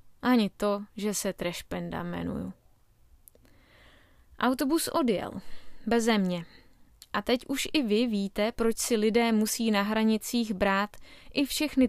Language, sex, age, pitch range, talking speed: Czech, female, 20-39, 195-230 Hz, 125 wpm